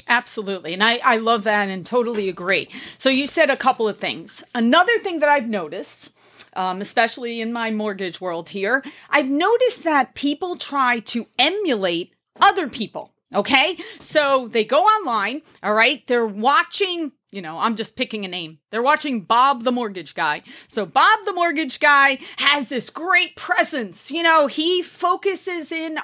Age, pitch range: 30-49, 230-330 Hz